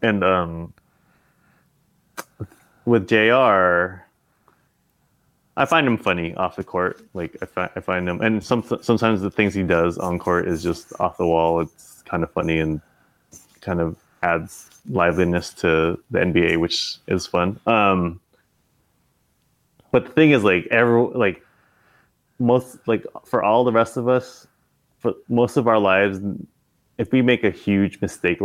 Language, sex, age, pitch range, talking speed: English, male, 20-39, 90-115 Hz, 155 wpm